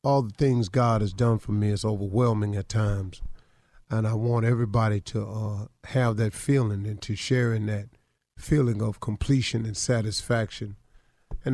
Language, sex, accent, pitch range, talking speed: English, male, American, 110-125 Hz, 165 wpm